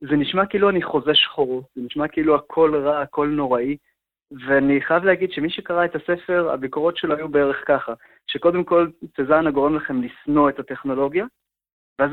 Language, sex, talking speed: Hebrew, male, 170 wpm